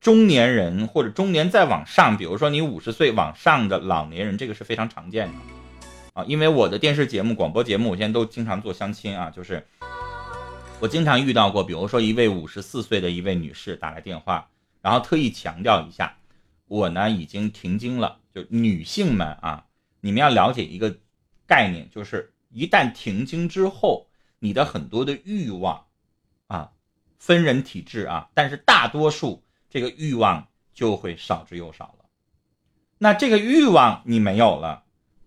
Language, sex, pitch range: Chinese, male, 100-150 Hz